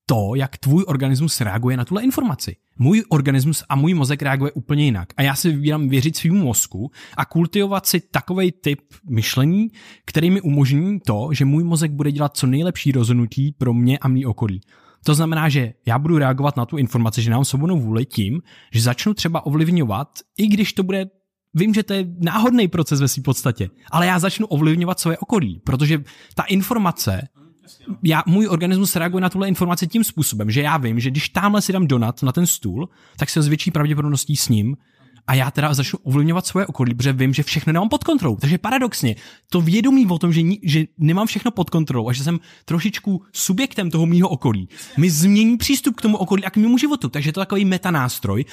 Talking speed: 205 wpm